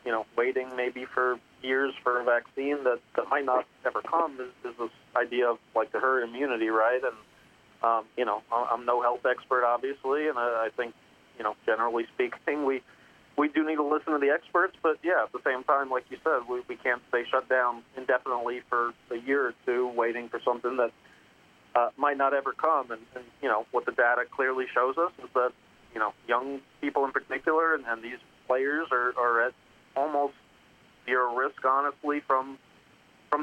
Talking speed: 200 wpm